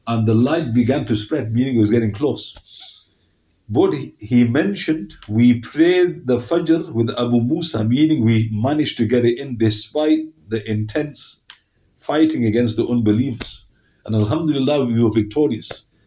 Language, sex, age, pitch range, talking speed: English, male, 50-69, 110-150 Hz, 150 wpm